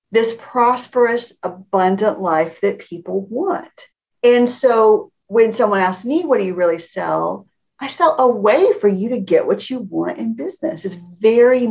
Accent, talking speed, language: American, 170 wpm, English